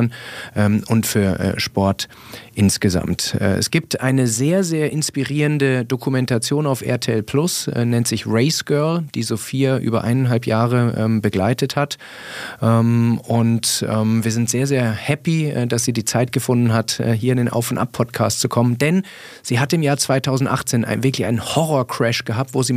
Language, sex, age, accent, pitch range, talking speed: German, male, 40-59, German, 115-145 Hz, 155 wpm